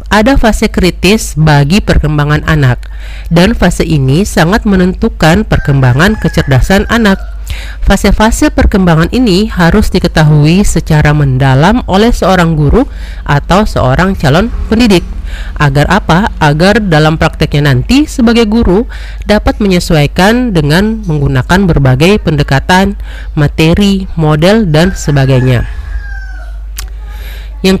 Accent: native